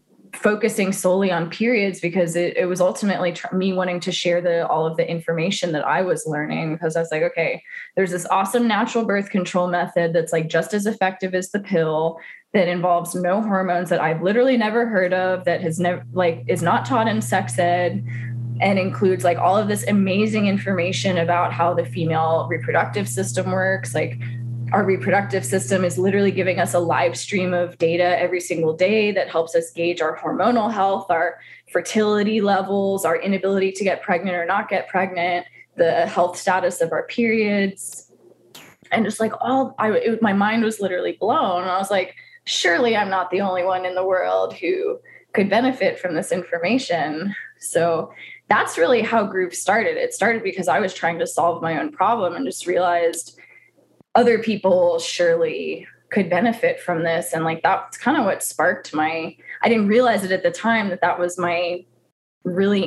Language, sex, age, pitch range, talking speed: English, female, 20-39, 170-205 Hz, 185 wpm